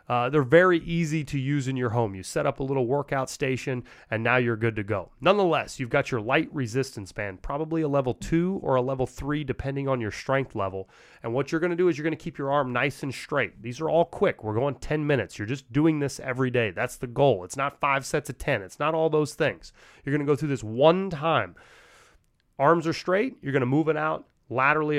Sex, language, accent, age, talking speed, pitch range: male, English, American, 30-49, 250 wpm, 125-165 Hz